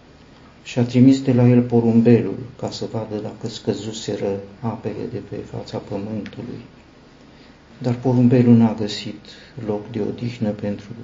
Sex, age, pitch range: male, 50-69, 105-120 Hz